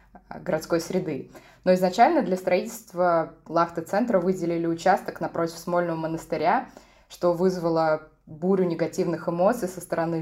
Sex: female